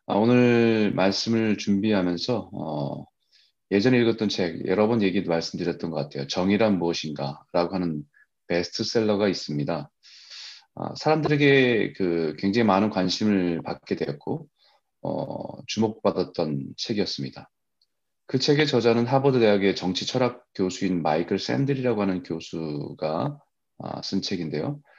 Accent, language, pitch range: native, Korean, 90-120 Hz